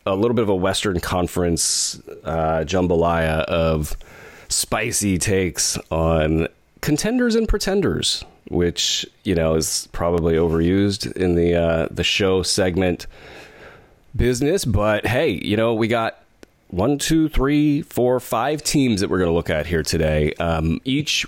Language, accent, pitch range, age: English, American, 85-110 Hz, 30-49